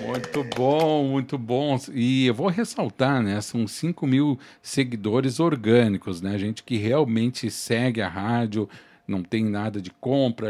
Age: 50-69